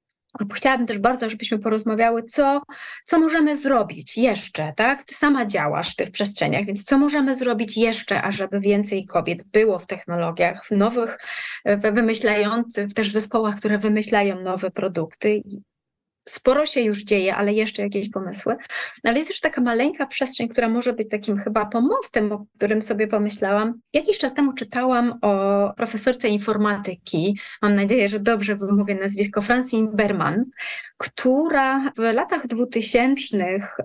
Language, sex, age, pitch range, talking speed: Polish, female, 30-49, 200-235 Hz, 145 wpm